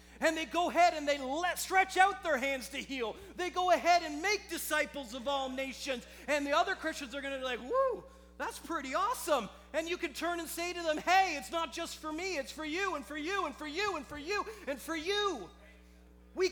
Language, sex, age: English, male, 30-49